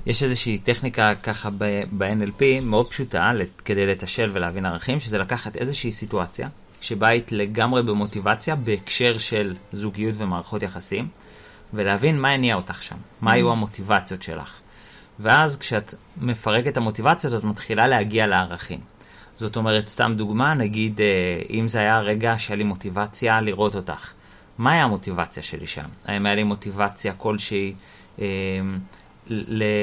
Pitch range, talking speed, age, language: 100-120 Hz, 135 wpm, 30-49, Hebrew